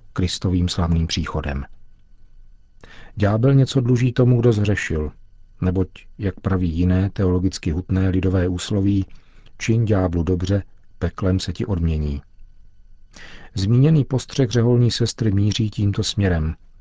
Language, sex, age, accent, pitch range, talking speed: Czech, male, 50-69, native, 90-105 Hz, 110 wpm